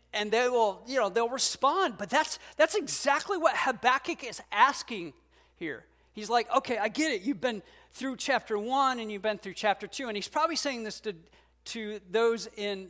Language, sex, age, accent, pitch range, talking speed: English, male, 40-59, American, 195-270 Hz, 195 wpm